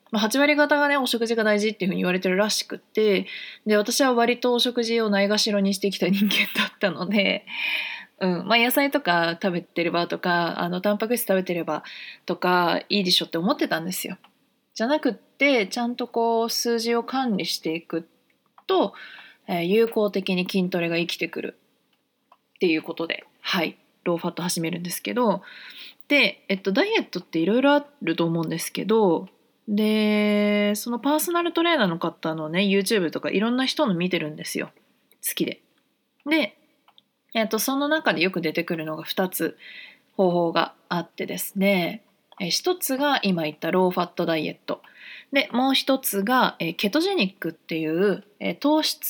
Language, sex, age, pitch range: Japanese, female, 20-39, 175-250 Hz